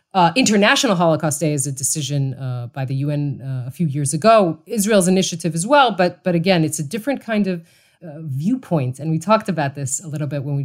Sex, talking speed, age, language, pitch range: female, 225 wpm, 30-49, English, 135-175 Hz